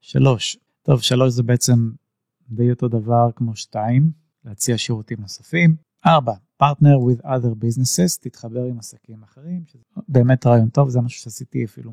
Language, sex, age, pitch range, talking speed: Hebrew, male, 30-49, 120-145 Hz, 150 wpm